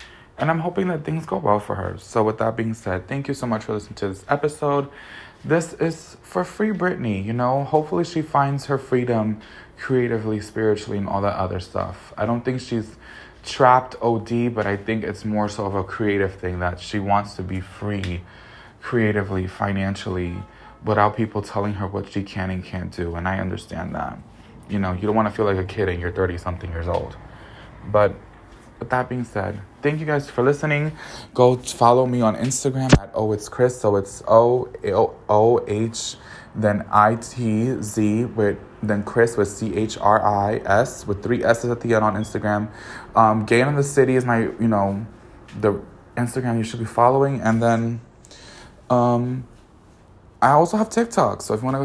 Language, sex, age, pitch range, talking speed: English, male, 20-39, 105-125 Hz, 185 wpm